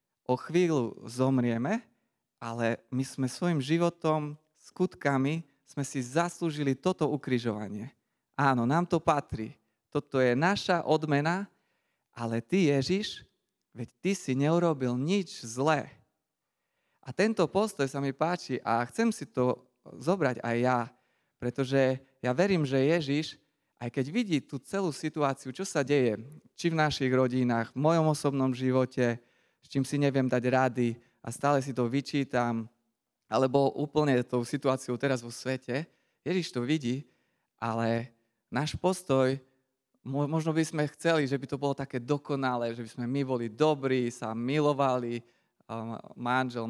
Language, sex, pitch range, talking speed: Slovak, male, 120-150 Hz, 140 wpm